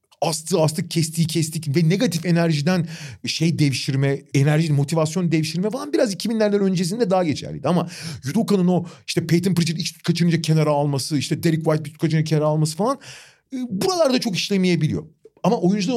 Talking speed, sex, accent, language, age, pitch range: 145 wpm, male, native, Turkish, 40-59, 140-190 Hz